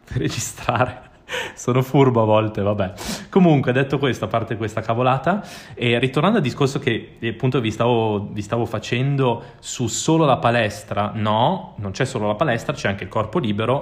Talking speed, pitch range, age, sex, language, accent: 170 wpm, 105-130 Hz, 20-39, male, Italian, native